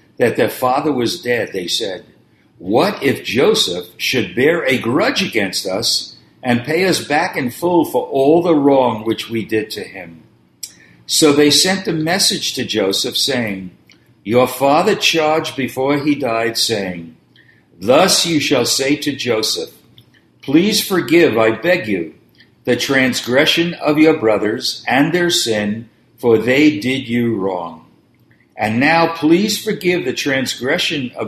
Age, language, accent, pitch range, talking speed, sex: 60-79, English, American, 110-155 Hz, 150 wpm, male